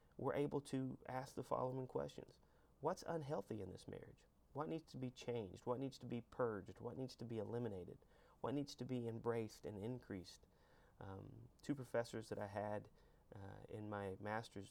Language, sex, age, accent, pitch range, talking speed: English, male, 30-49, American, 95-120 Hz, 180 wpm